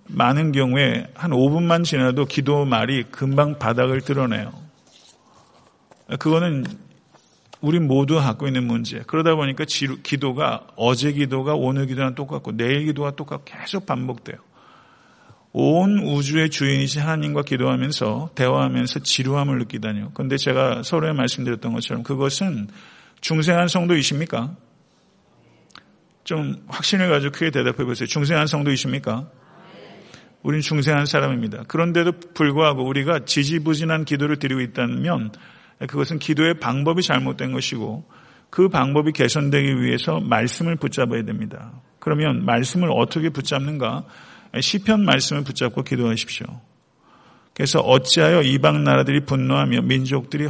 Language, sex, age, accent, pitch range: Korean, male, 40-59, native, 130-155 Hz